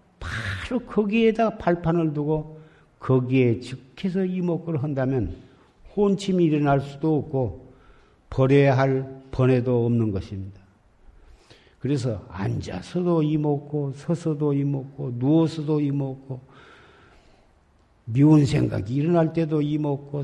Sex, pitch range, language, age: male, 120-150 Hz, Korean, 50-69